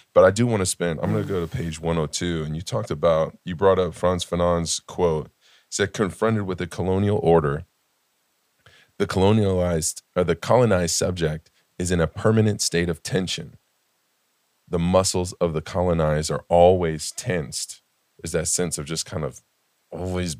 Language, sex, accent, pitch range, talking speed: English, male, American, 80-95 Hz, 175 wpm